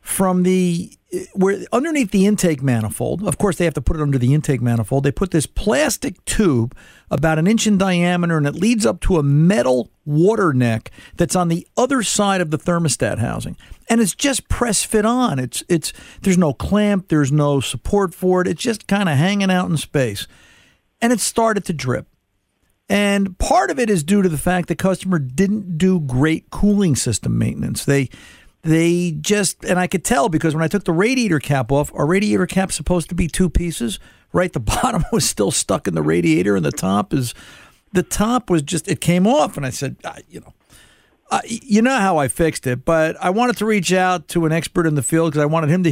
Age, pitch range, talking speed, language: 50-69, 140-190 Hz, 215 wpm, English